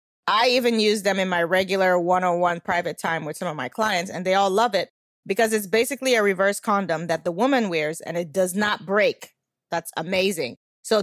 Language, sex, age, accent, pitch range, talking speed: English, female, 20-39, American, 175-225 Hz, 205 wpm